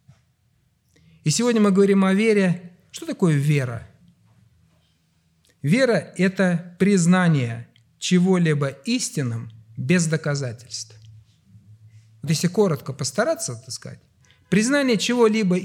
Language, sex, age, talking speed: Russian, male, 50-69, 90 wpm